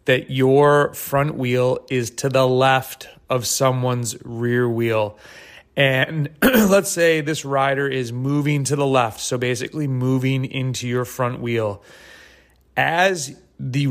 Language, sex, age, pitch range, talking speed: English, male, 30-49, 125-155 Hz, 135 wpm